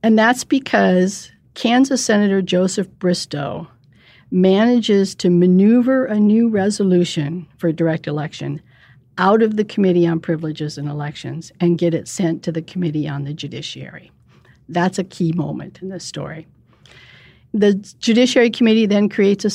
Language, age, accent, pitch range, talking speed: English, 60-79, American, 160-200 Hz, 145 wpm